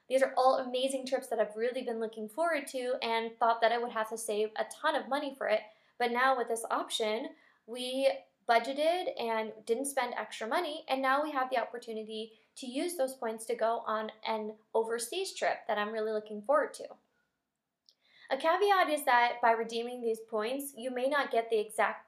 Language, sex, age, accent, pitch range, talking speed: English, female, 20-39, American, 225-275 Hz, 200 wpm